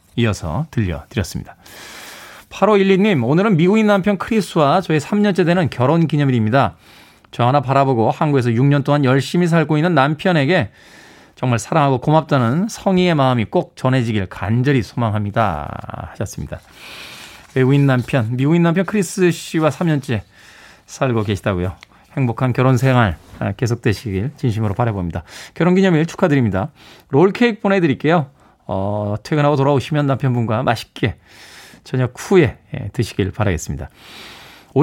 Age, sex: 20-39, male